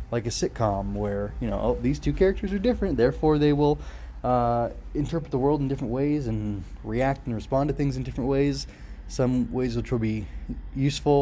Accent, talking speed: American, 195 wpm